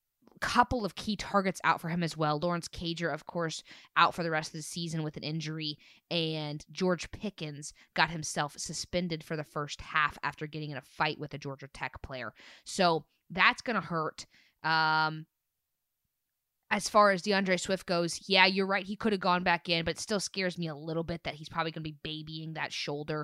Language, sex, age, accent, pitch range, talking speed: English, female, 20-39, American, 145-170 Hz, 205 wpm